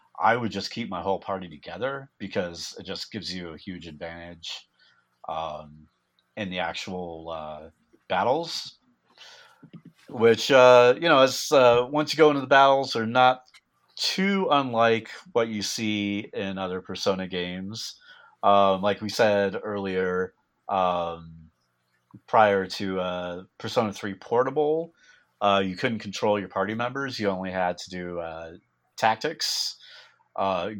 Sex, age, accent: male, 30-49, American